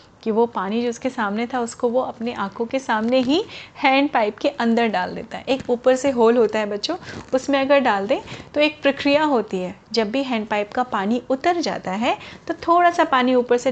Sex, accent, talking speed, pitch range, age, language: female, native, 230 wpm, 210-265 Hz, 30-49, Hindi